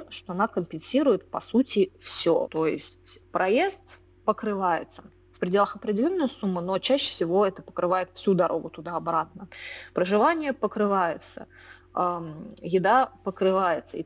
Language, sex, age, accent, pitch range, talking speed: Russian, female, 20-39, native, 175-220 Hz, 120 wpm